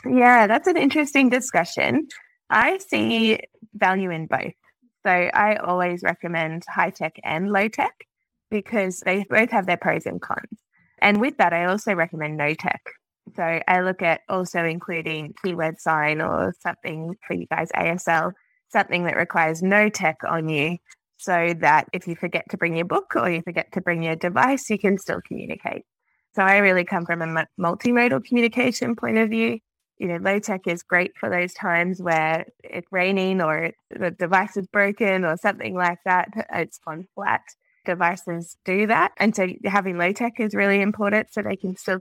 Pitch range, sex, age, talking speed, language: 170-210 Hz, female, 20-39, 175 wpm, English